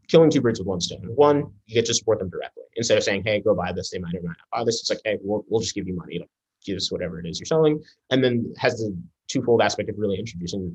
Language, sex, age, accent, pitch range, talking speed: English, male, 20-39, American, 95-130 Hz, 295 wpm